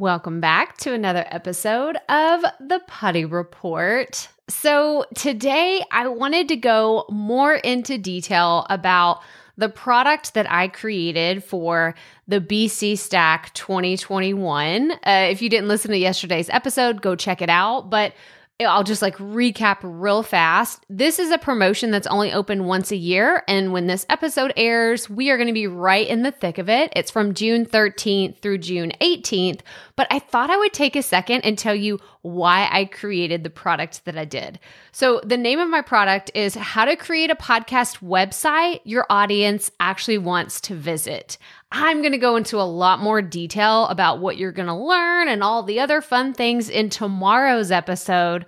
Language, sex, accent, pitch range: English, female, American, 185-250 Hz